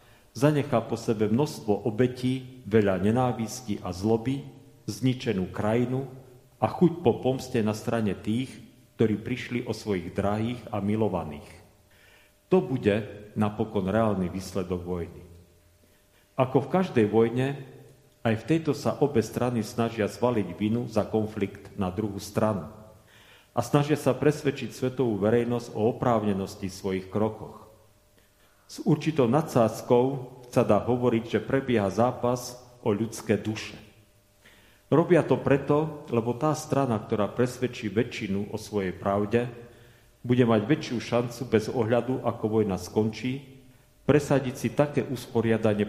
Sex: male